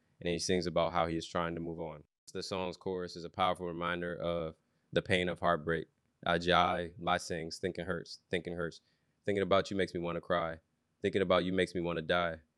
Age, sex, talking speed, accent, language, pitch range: 20-39, male, 225 wpm, American, English, 85-95 Hz